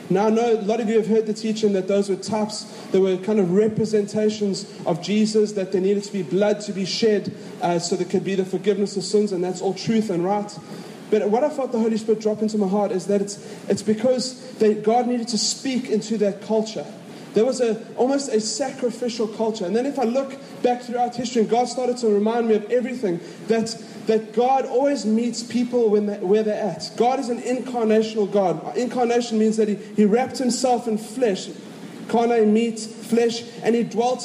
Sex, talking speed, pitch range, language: male, 220 wpm, 205-240 Hz, English